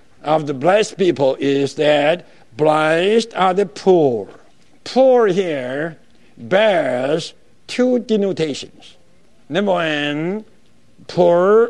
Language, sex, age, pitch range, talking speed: English, male, 60-79, 155-220 Hz, 90 wpm